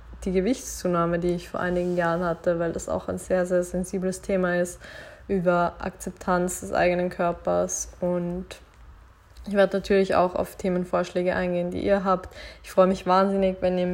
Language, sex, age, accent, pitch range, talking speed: German, female, 20-39, German, 175-190 Hz, 170 wpm